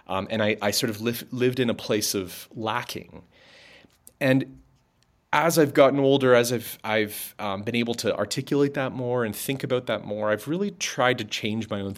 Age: 30-49